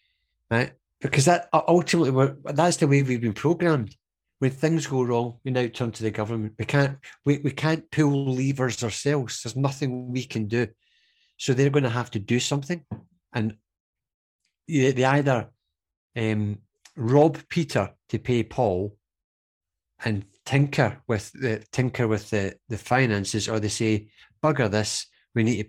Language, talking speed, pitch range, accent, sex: English, 155 wpm, 110-145 Hz, British, male